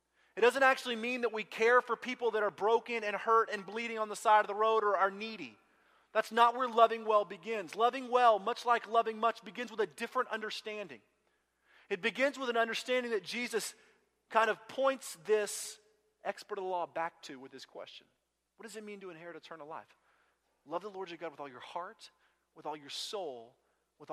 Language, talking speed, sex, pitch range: English, 210 wpm, male, 180-230 Hz